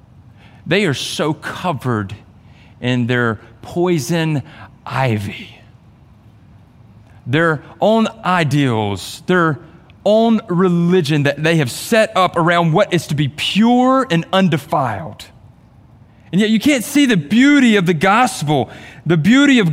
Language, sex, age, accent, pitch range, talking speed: English, male, 40-59, American, 110-175 Hz, 120 wpm